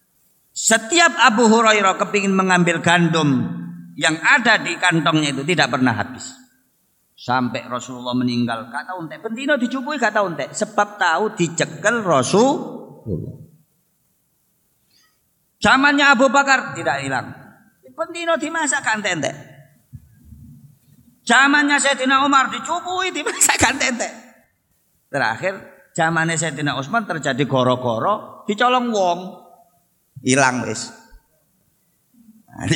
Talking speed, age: 95 wpm, 50-69